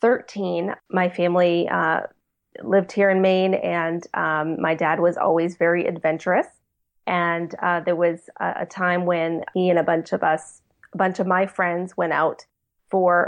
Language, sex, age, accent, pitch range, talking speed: English, female, 30-49, American, 165-195 Hz, 170 wpm